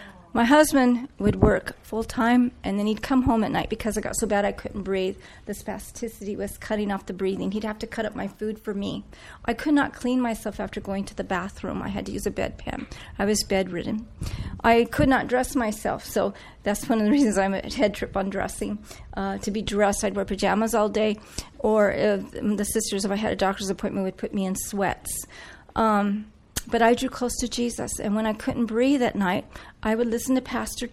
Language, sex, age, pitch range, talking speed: English, female, 40-59, 195-230 Hz, 225 wpm